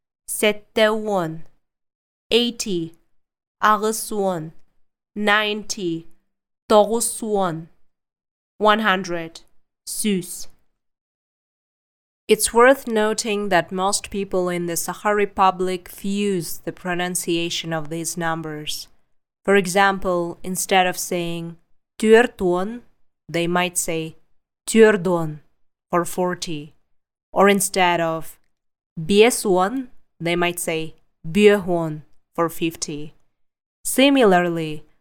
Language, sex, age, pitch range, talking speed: English, female, 20-39, 170-210 Hz, 80 wpm